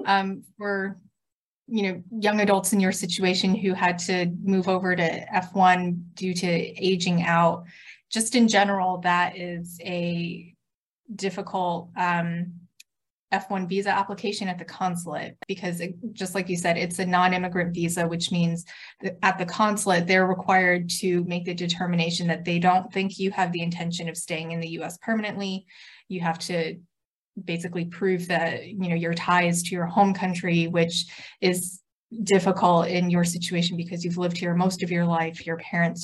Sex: female